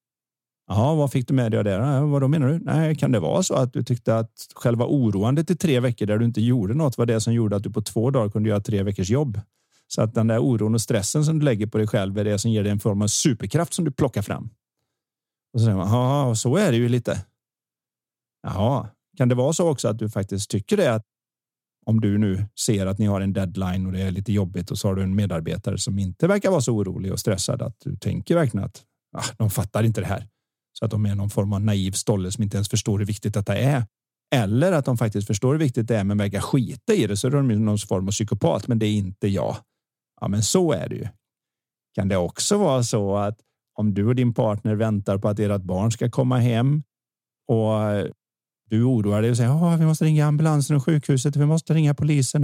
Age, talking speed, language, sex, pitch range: 40-59, 250 wpm, Swedish, male, 105-135 Hz